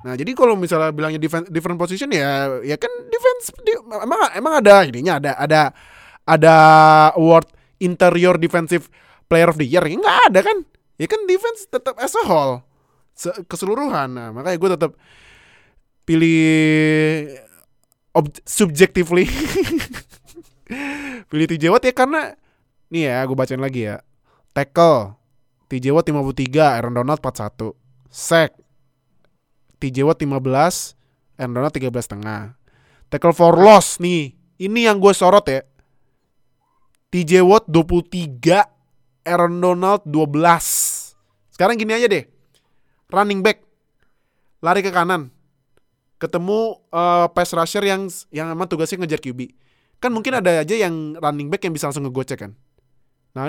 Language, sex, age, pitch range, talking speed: Indonesian, male, 20-39, 135-185 Hz, 130 wpm